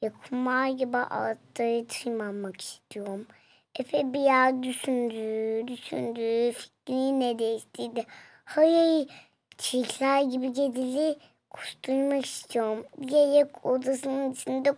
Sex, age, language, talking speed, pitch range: male, 20-39, Turkish, 95 wpm, 240-290 Hz